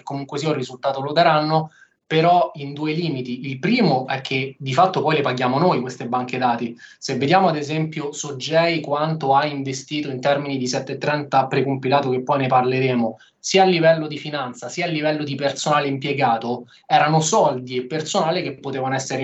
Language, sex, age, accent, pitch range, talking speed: Italian, male, 20-39, native, 135-160 Hz, 180 wpm